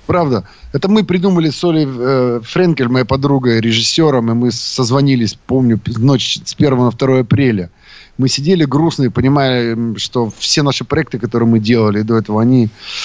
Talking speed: 160 wpm